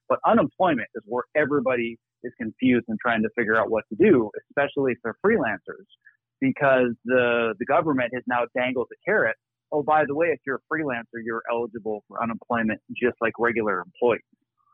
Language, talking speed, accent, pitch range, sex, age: English, 180 wpm, American, 120-150 Hz, male, 40-59